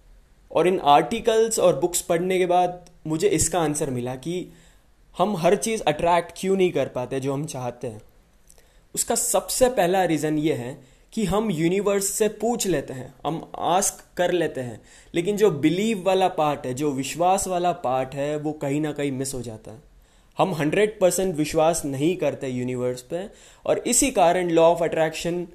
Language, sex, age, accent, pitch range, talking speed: Hindi, male, 20-39, native, 145-195 Hz, 175 wpm